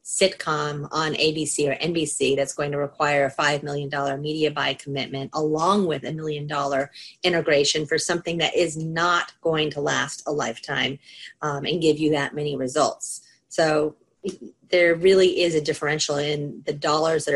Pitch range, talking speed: 145-165 Hz, 165 wpm